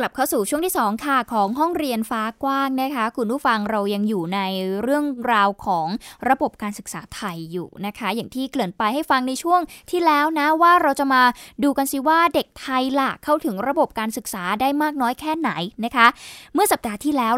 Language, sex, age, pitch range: Thai, female, 20-39, 215-275 Hz